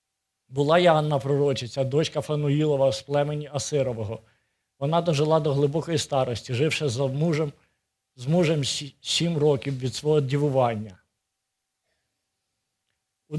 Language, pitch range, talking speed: Ukrainian, 125-155 Hz, 110 wpm